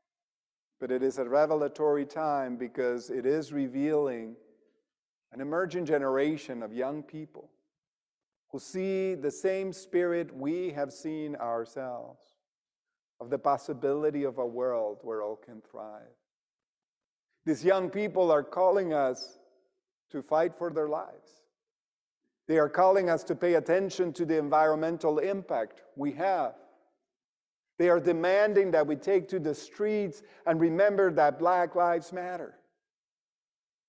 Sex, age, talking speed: male, 50-69, 130 wpm